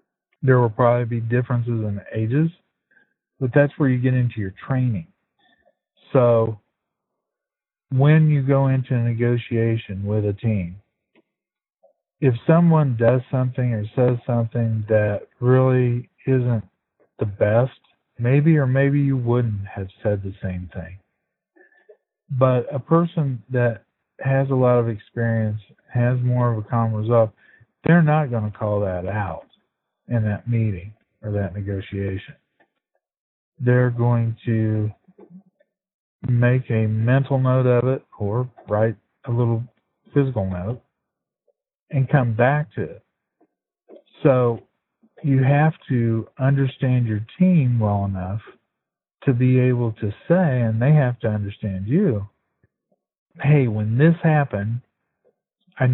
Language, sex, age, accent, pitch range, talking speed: English, male, 50-69, American, 110-135 Hz, 130 wpm